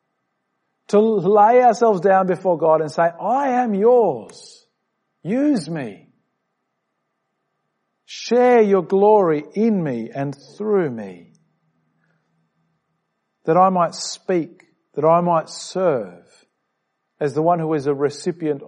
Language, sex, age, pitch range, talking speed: English, male, 50-69, 120-170 Hz, 115 wpm